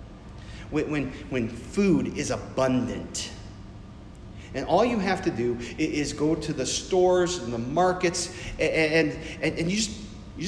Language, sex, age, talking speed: English, male, 40-59, 155 wpm